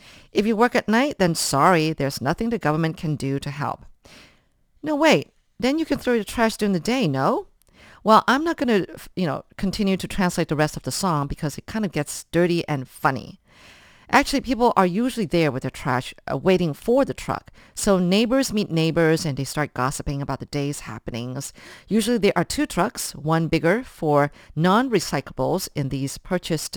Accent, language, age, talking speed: American, English, 50-69, 195 wpm